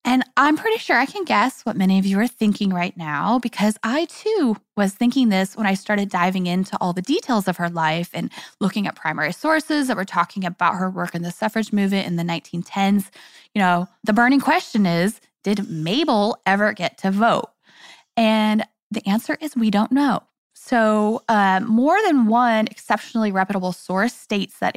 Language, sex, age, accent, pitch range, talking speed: English, female, 10-29, American, 190-255 Hz, 190 wpm